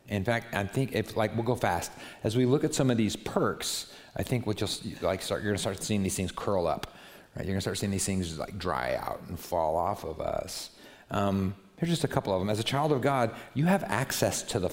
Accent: American